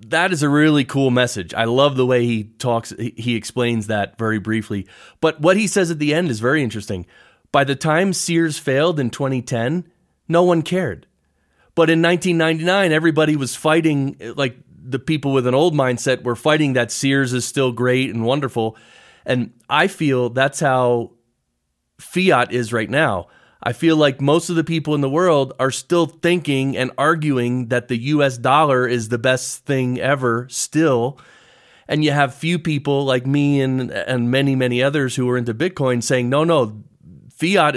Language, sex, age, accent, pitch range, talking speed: English, male, 30-49, American, 115-150 Hz, 180 wpm